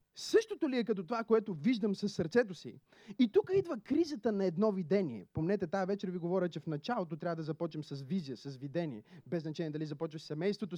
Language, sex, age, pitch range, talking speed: Bulgarian, male, 30-49, 145-205 Hz, 205 wpm